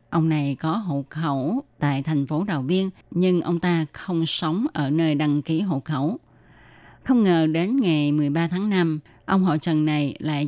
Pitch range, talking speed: 150-180 Hz, 190 wpm